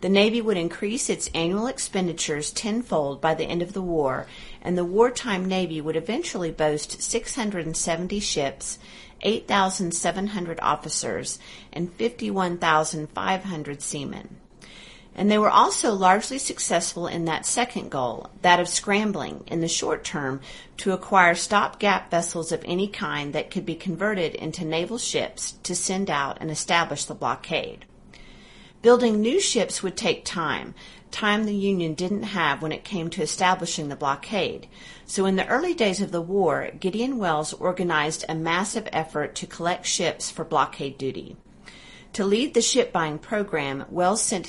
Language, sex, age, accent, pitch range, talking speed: English, female, 40-59, American, 160-210 Hz, 150 wpm